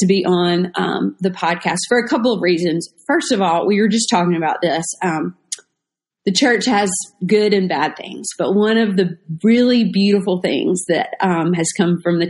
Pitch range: 180-230 Hz